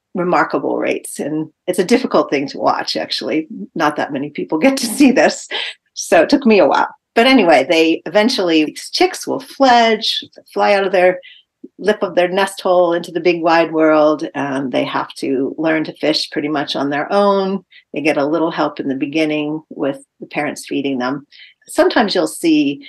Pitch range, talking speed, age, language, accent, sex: 150-215 Hz, 195 wpm, 40-59, English, American, female